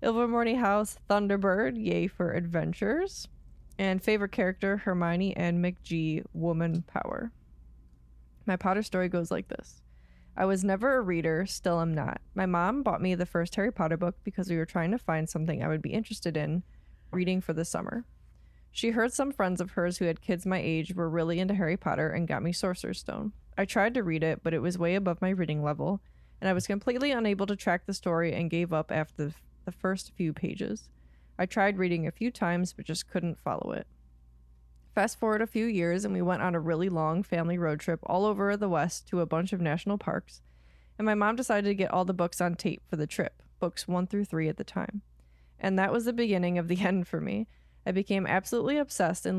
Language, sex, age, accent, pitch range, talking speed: English, female, 20-39, American, 165-200 Hz, 215 wpm